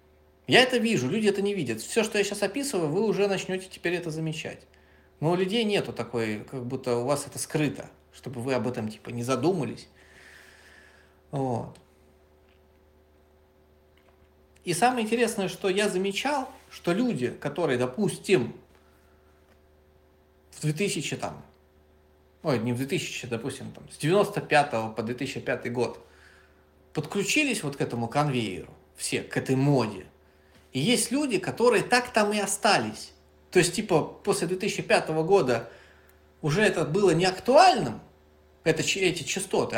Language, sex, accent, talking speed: Russian, male, native, 135 wpm